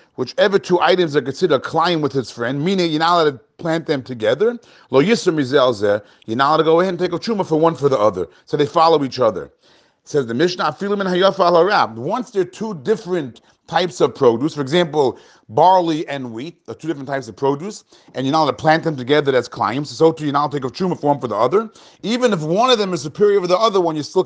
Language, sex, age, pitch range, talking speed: English, male, 30-49, 135-175 Hz, 235 wpm